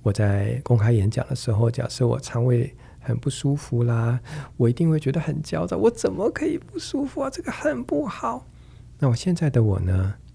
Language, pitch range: Chinese, 105-135 Hz